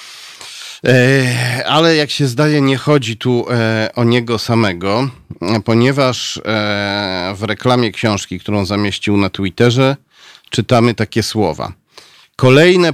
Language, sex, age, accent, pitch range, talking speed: Polish, male, 40-59, native, 110-135 Hz, 100 wpm